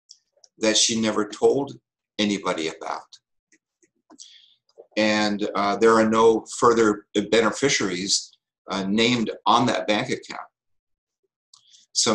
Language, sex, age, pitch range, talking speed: English, male, 50-69, 95-115 Hz, 100 wpm